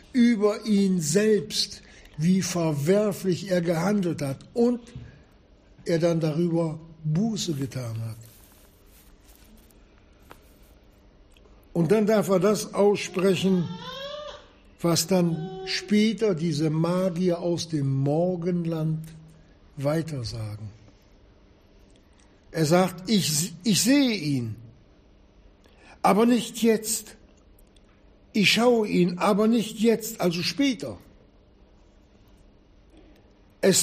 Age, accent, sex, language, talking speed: 60-79, German, male, German, 85 wpm